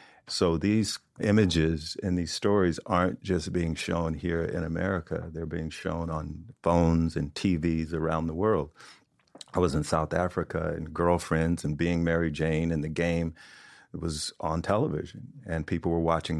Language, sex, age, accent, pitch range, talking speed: English, male, 50-69, American, 80-90 Hz, 160 wpm